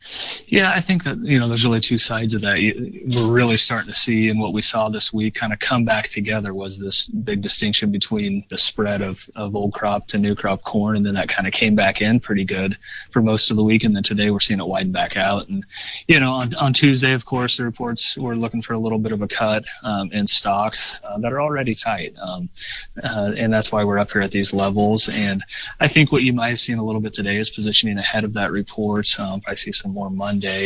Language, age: English, 30-49